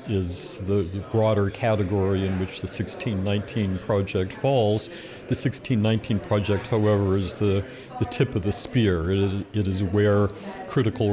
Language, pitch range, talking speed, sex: English, 100-115 Hz, 140 wpm, male